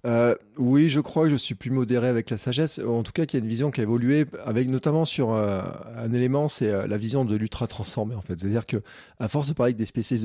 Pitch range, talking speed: 110-140 Hz, 270 wpm